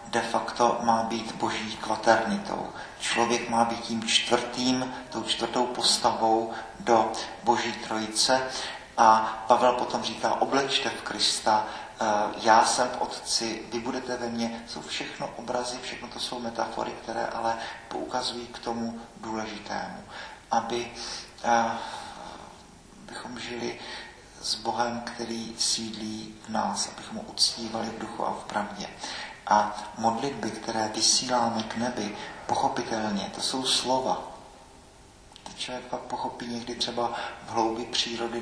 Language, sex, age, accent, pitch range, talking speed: Czech, male, 40-59, native, 115-120 Hz, 125 wpm